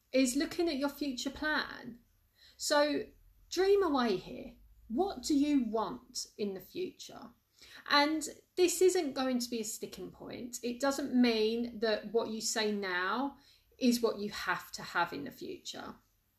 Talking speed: 155 wpm